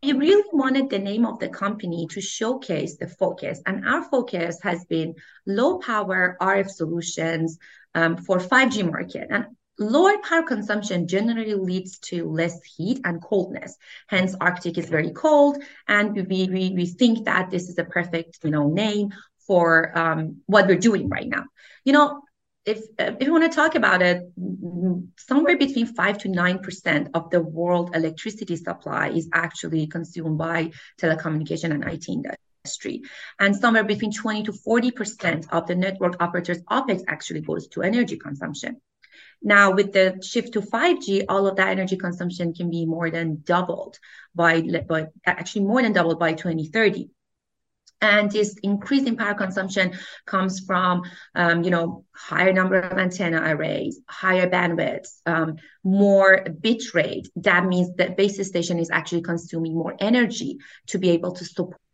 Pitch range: 170-215 Hz